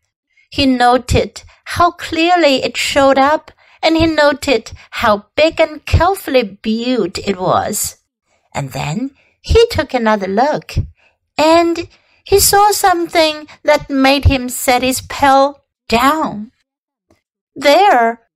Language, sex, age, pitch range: Chinese, female, 60-79, 225-315 Hz